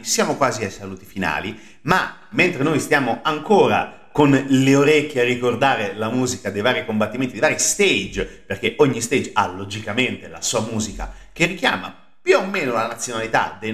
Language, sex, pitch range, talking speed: Italian, male, 105-145 Hz, 170 wpm